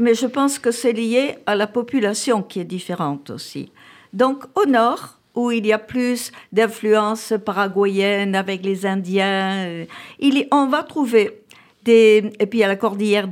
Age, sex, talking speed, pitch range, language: 50-69, female, 160 wpm, 205-265 Hz, French